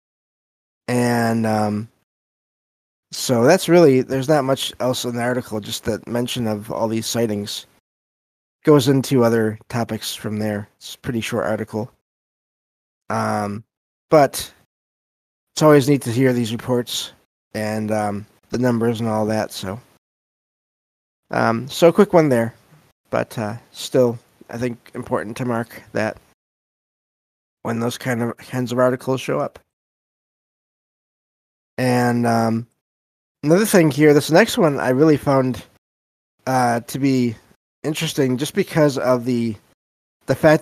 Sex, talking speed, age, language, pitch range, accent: male, 135 wpm, 20-39, English, 110-135 Hz, American